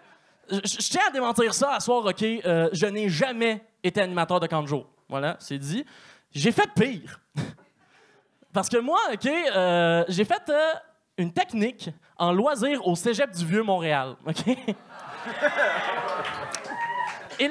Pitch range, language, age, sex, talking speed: 195-300 Hz, French, 20-39, male, 145 wpm